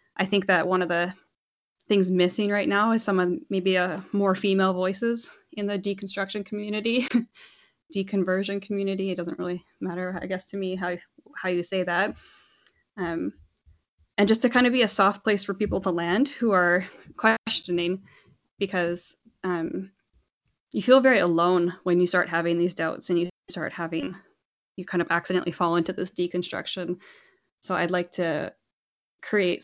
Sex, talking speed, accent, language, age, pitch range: female, 165 wpm, American, English, 10-29, 175-200 Hz